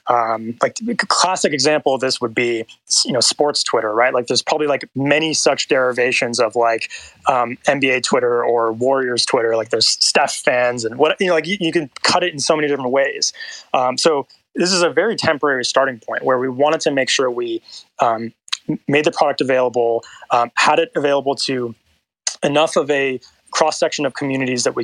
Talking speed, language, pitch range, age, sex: 200 wpm, English, 120-155 Hz, 20-39, male